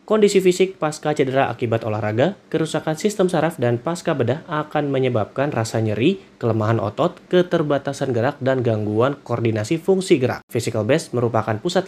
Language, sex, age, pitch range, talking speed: Indonesian, male, 30-49, 110-150 Hz, 145 wpm